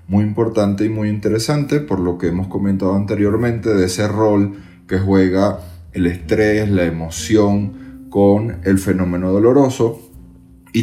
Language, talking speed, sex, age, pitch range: Spanish, 140 wpm, male, 30-49, 90-110 Hz